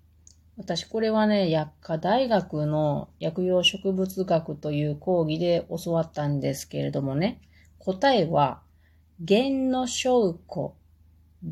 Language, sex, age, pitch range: Japanese, female, 30-49, 140-200 Hz